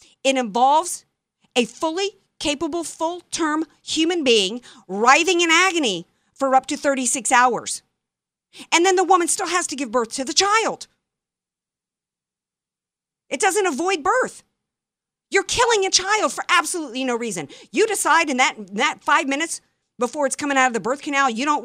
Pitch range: 215-315 Hz